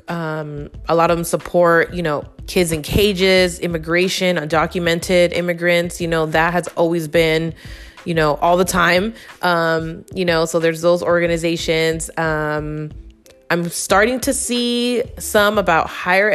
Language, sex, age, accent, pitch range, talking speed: English, female, 20-39, American, 160-185 Hz, 145 wpm